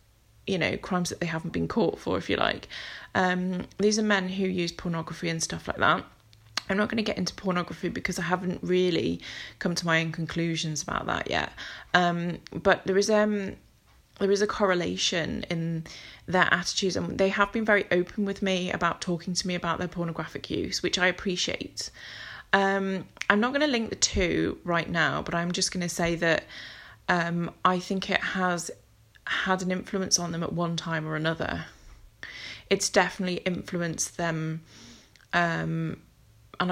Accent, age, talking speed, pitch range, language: British, 20-39, 180 wpm, 160-190 Hz, English